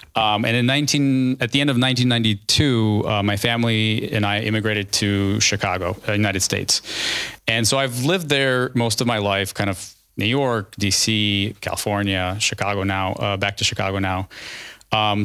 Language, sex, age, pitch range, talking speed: Ukrainian, male, 30-49, 100-120 Hz, 165 wpm